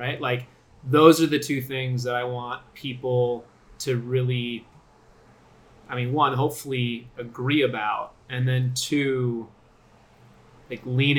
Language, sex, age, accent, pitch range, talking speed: English, male, 20-39, American, 125-150 Hz, 130 wpm